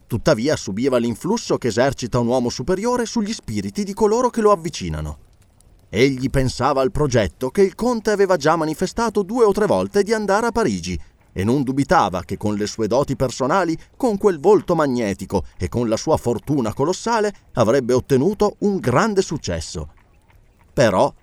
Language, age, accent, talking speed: Italian, 30-49, native, 165 wpm